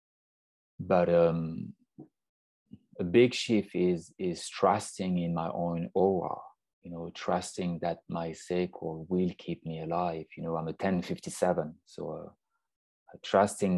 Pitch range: 95-150 Hz